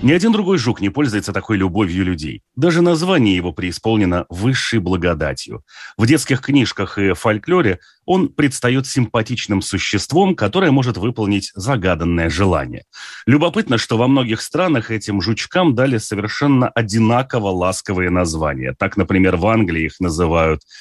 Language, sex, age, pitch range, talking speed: Russian, male, 30-49, 90-125 Hz, 135 wpm